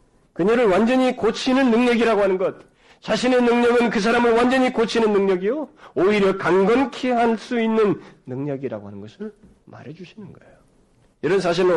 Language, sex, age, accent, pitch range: Korean, male, 40-59, native, 135-220 Hz